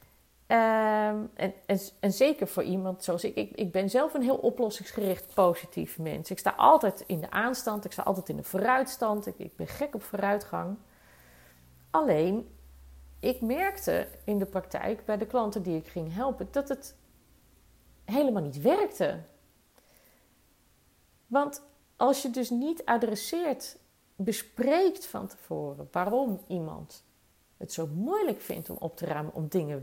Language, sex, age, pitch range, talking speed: Dutch, female, 40-59, 185-260 Hz, 150 wpm